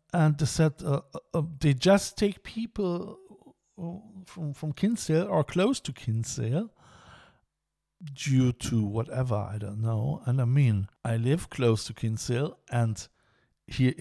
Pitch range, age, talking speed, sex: 115-155 Hz, 50-69, 135 wpm, male